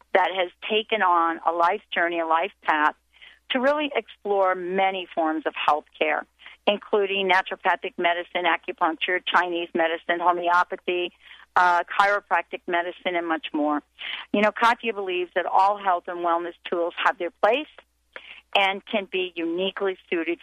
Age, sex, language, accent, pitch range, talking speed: 50-69, female, English, American, 170-215 Hz, 140 wpm